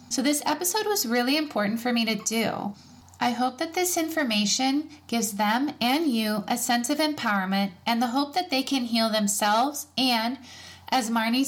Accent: American